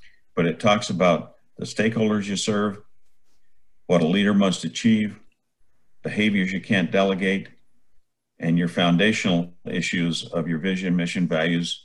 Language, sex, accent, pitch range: English, male, American, 85-120 Hz